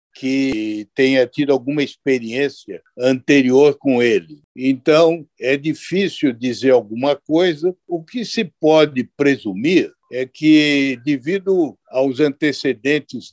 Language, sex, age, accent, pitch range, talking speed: Portuguese, male, 60-79, Brazilian, 120-155 Hz, 110 wpm